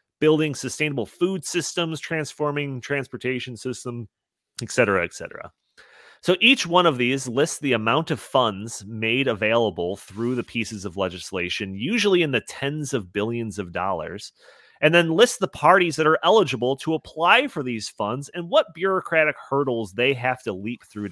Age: 30-49